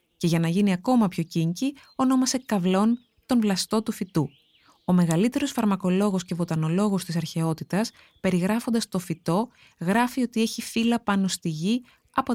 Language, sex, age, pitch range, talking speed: Greek, female, 20-39, 175-230 Hz, 150 wpm